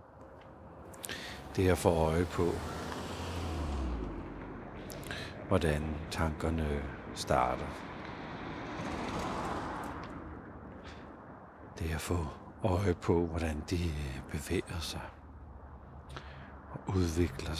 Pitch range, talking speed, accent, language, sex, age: 80-100 Hz, 70 wpm, native, Danish, male, 60-79